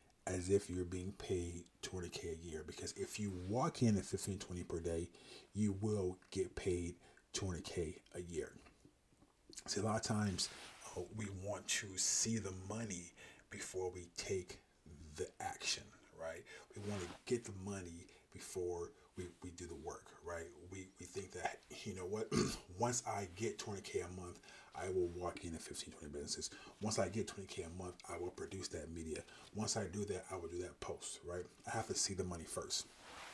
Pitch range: 90-105 Hz